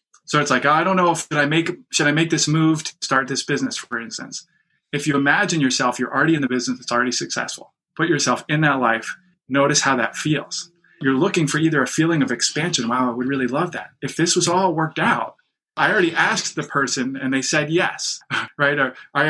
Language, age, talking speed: English, 30-49, 230 wpm